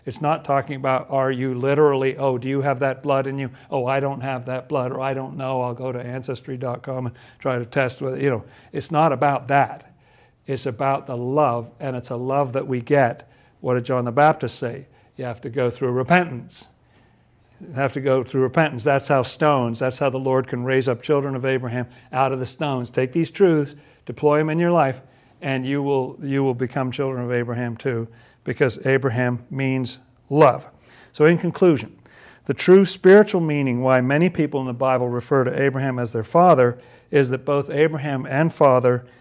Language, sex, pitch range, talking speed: English, male, 125-140 Hz, 205 wpm